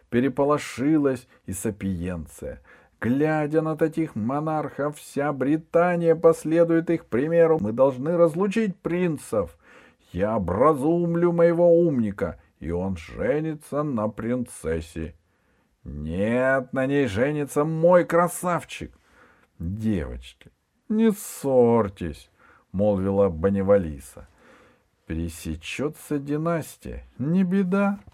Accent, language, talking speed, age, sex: native, Russian, 85 wpm, 50-69, male